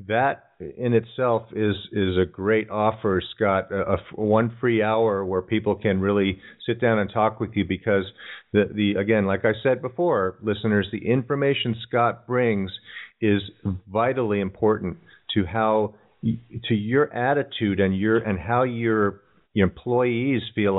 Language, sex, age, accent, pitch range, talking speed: English, male, 50-69, American, 100-120 Hz, 160 wpm